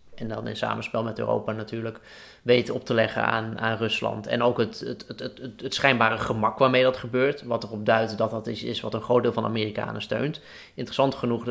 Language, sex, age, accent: Dutch, male, 20-39, Dutch